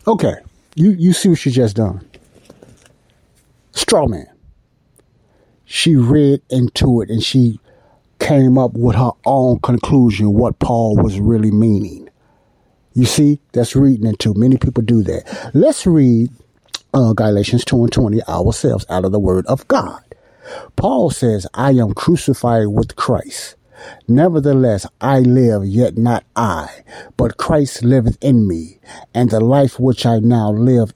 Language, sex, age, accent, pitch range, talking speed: English, male, 60-79, American, 110-135 Hz, 145 wpm